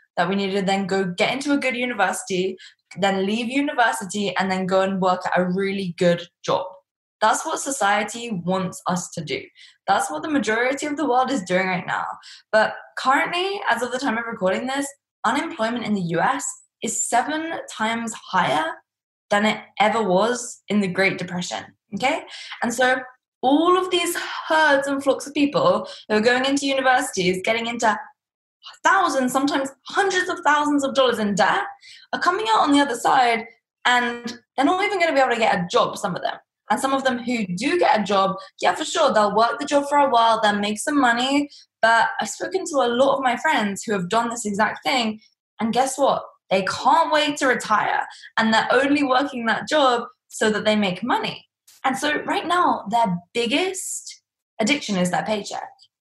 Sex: female